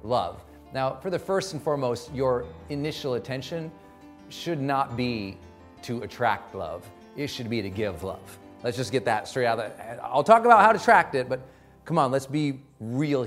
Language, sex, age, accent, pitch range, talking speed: English, male, 40-59, American, 125-195 Hz, 195 wpm